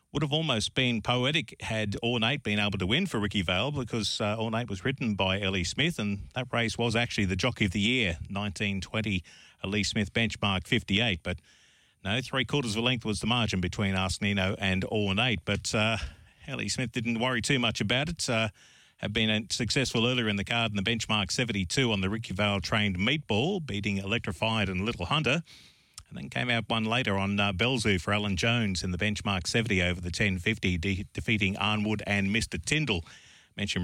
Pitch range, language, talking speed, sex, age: 100-120 Hz, English, 195 wpm, male, 40-59